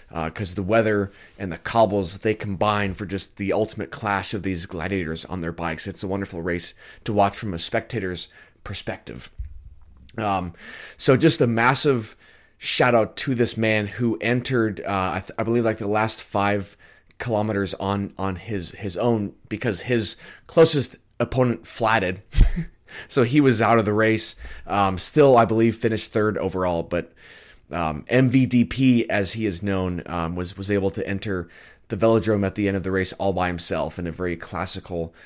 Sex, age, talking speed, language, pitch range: male, 20-39, 175 wpm, English, 90-110 Hz